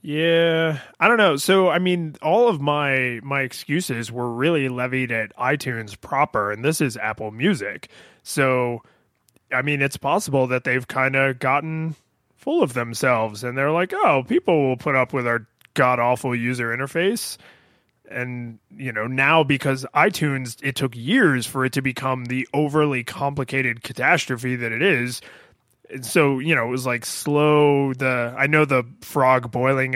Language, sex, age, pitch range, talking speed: English, male, 20-39, 125-150 Hz, 165 wpm